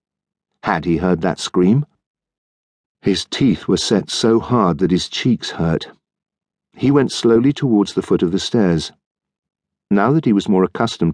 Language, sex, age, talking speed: English, male, 50-69, 160 wpm